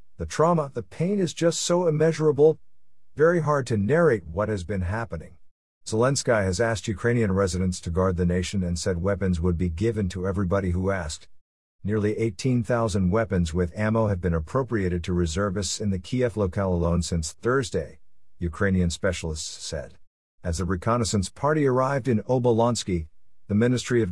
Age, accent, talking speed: 50-69, American, 160 wpm